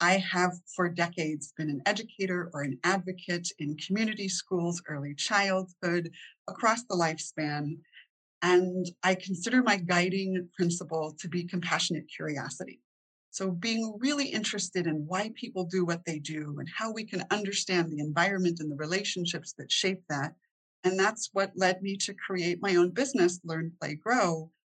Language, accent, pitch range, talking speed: English, American, 160-190 Hz, 160 wpm